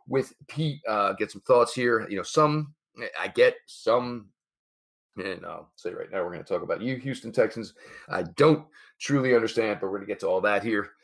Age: 40-59